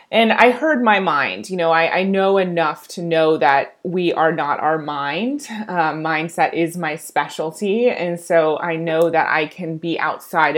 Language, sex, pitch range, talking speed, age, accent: English, female, 155-190 Hz, 185 wpm, 20-39, American